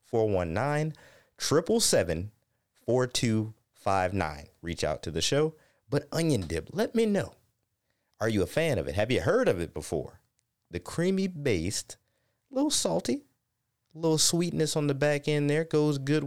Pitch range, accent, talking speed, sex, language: 105-150 Hz, American, 145 wpm, male, English